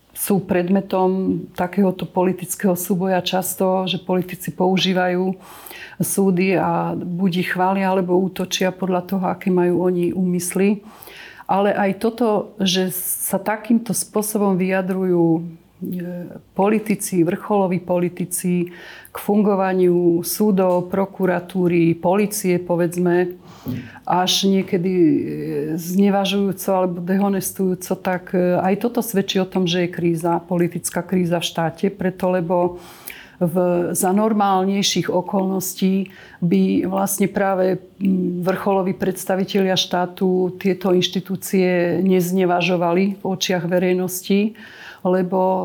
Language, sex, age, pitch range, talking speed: Slovak, female, 40-59, 180-195 Hz, 95 wpm